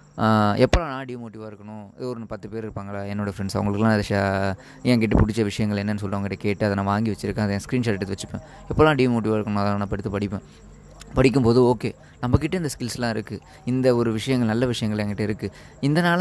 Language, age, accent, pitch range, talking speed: Tamil, 20-39, native, 105-135 Hz, 180 wpm